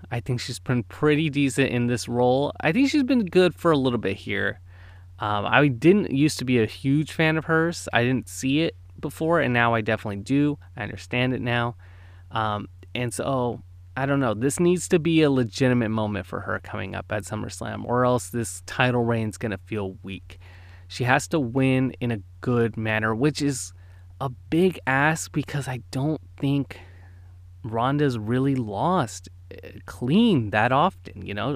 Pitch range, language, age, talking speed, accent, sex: 100-140 Hz, English, 20-39, 185 wpm, American, male